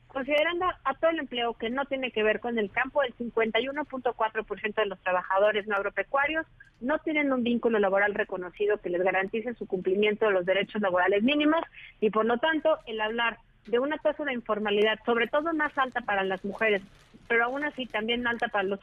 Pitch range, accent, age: 205-265 Hz, Mexican, 40-59